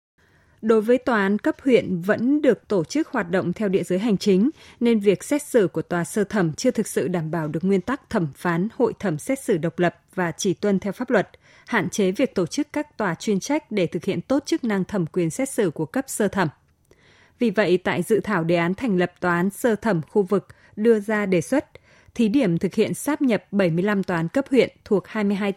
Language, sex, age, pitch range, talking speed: Vietnamese, female, 20-39, 180-225 Hz, 240 wpm